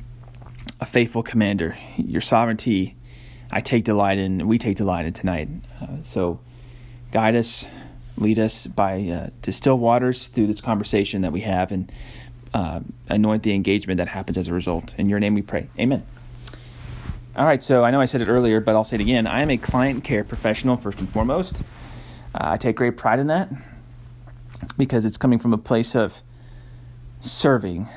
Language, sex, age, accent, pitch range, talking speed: English, male, 30-49, American, 105-125 Hz, 180 wpm